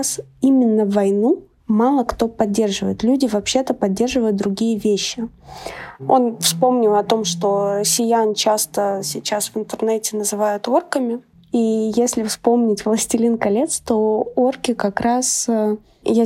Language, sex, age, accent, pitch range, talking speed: Russian, female, 20-39, native, 215-250 Hz, 120 wpm